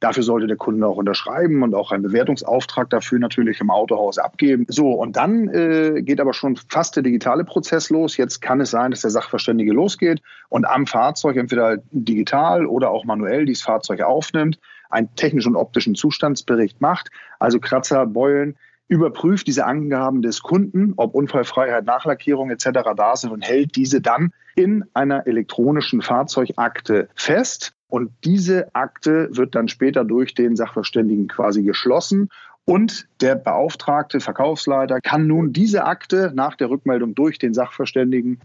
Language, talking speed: German, 155 wpm